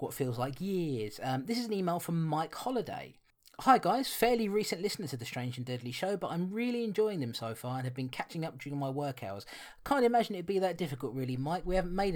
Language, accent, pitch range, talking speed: English, British, 130-195 Hz, 245 wpm